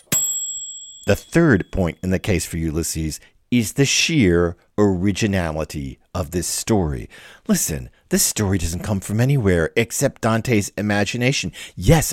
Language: English